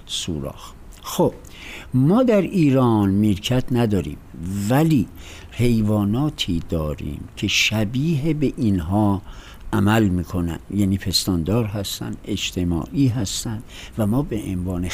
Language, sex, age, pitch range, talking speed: Persian, male, 60-79, 90-120 Hz, 100 wpm